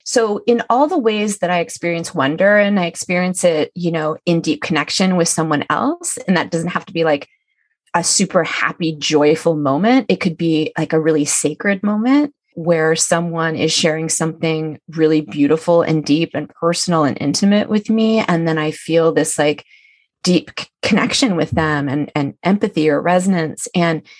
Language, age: English, 30-49